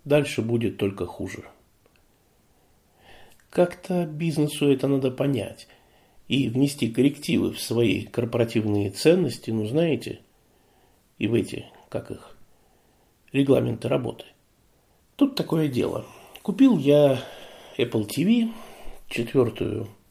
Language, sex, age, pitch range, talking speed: Russian, male, 50-69, 115-165 Hz, 100 wpm